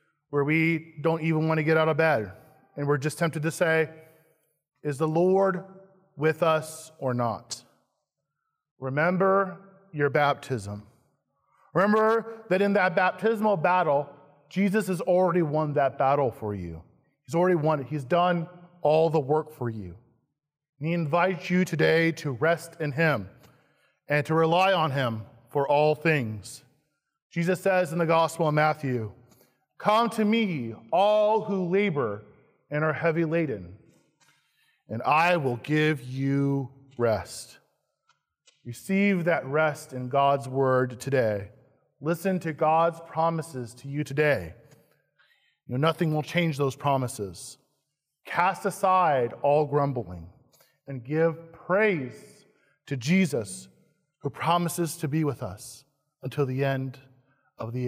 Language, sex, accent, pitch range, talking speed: English, male, American, 135-170 Hz, 135 wpm